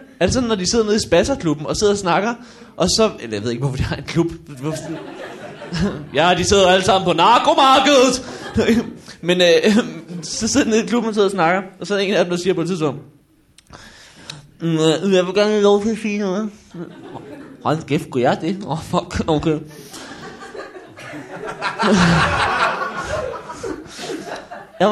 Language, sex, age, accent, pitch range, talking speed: Danish, male, 20-39, native, 170-245 Hz, 170 wpm